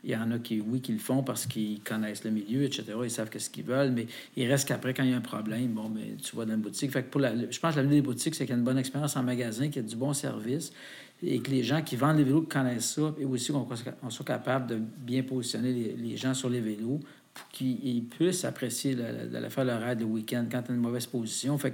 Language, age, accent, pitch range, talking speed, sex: French, 50-69, Canadian, 115-135 Hz, 280 wpm, male